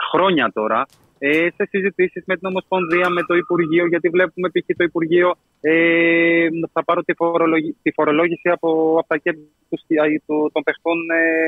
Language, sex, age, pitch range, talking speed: Greek, male, 30-49, 145-180 Hz, 130 wpm